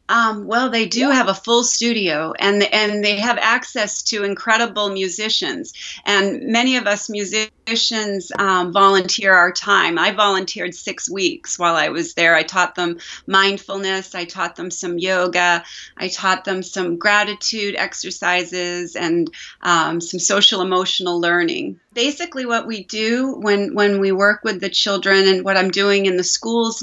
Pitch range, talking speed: 185-220 Hz, 160 wpm